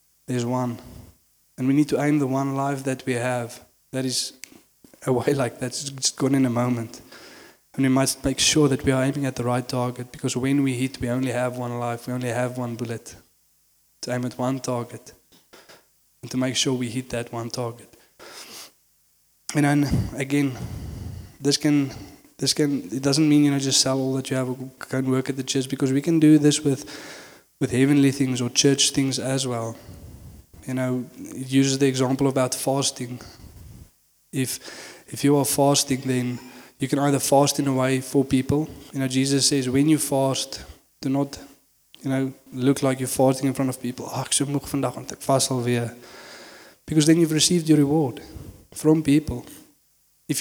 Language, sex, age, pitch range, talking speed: English, male, 20-39, 125-140 Hz, 180 wpm